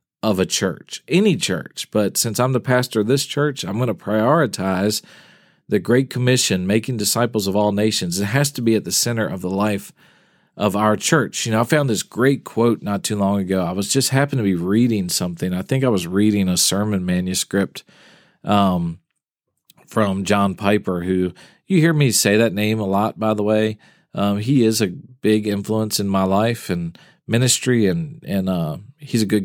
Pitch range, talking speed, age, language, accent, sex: 100-125 Hz, 200 wpm, 40-59, English, American, male